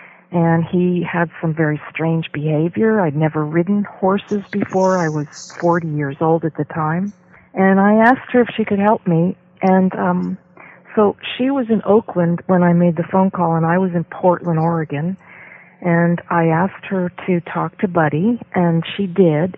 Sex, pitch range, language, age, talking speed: female, 165-195 Hz, English, 50-69, 180 wpm